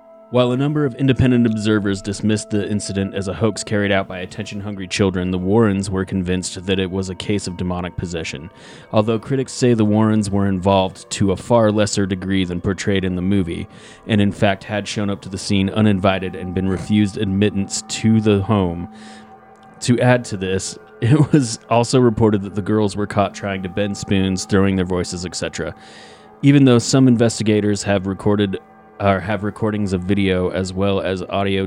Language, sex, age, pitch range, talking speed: English, male, 30-49, 95-115 Hz, 190 wpm